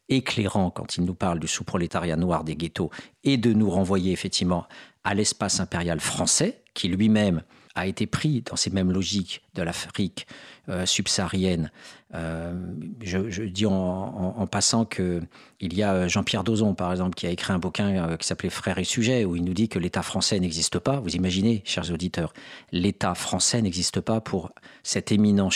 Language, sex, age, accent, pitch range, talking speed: French, male, 50-69, French, 90-115 Hz, 185 wpm